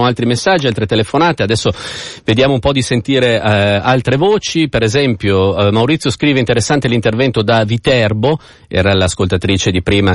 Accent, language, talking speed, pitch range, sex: native, Italian, 155 wpm, 95-125 Hz, male